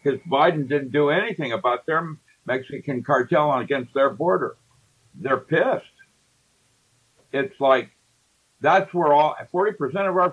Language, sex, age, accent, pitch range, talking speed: English, male, 60-79, American, 125-175 Hz, 130 wpm